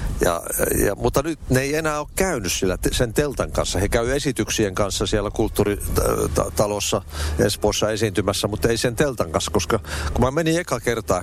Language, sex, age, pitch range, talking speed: Finnish, male, 60-79, 90-120 Hz, 170 wpm